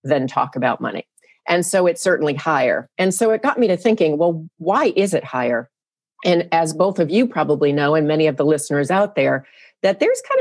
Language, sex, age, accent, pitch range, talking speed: English, female, 40-59, American, 155-195 Hz, 220 wpm